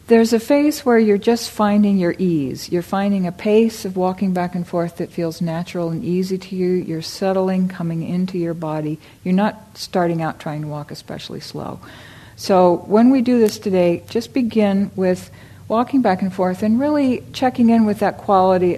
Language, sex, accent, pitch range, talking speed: English, female, American, 170-210 Hz, 190 wpm